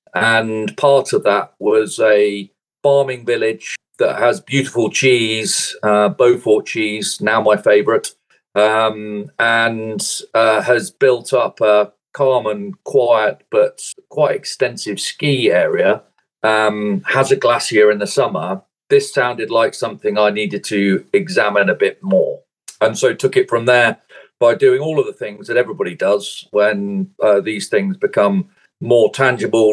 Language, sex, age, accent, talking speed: English, male, 40-59, British, 145 wpm